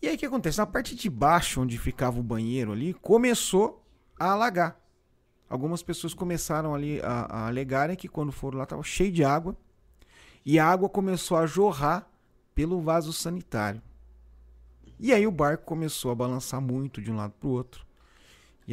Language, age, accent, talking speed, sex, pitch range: Portuguese, 40-59, Brazilian, 180 wpm, male, 120-170 Hz